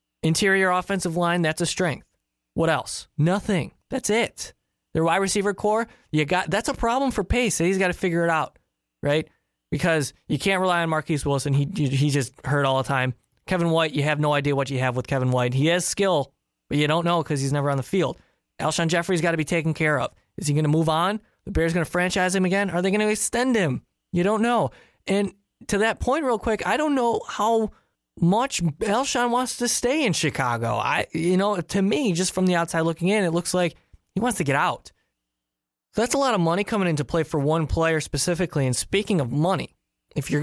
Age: 20-39